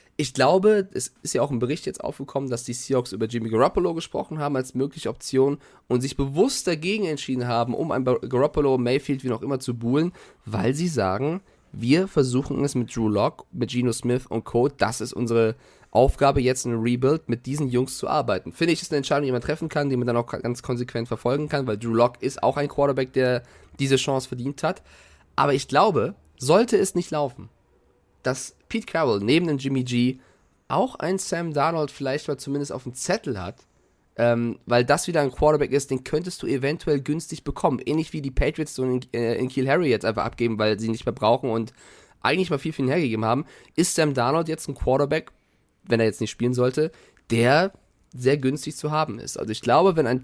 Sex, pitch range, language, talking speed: male, 120-150 Hz, German, 210 wpm